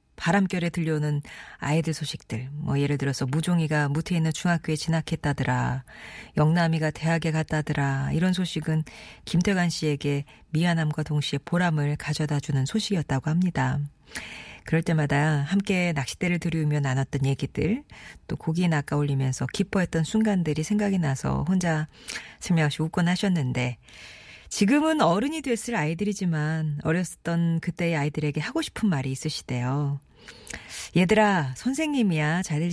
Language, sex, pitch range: Korean, female, 145-180 Hz